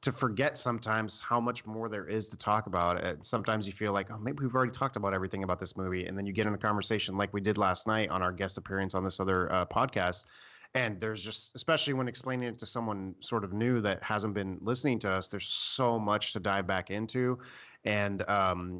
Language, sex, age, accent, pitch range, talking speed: English, male, 30-49, American, 95-120 Hz, 235 wpm